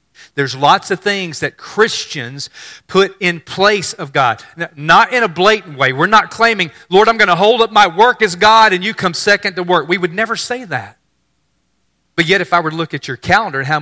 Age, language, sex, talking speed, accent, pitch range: 40-59, English, male, 225 wpm, American, 130-175 Hz